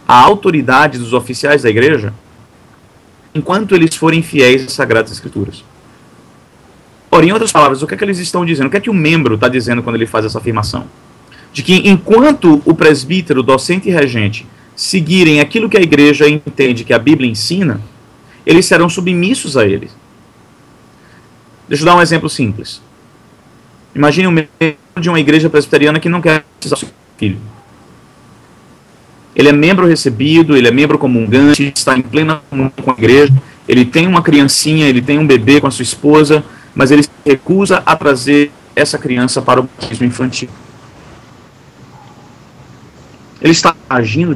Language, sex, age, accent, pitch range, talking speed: Portuguese, male, 40-59, Brazilian, 125-155 Hz, 165 wpm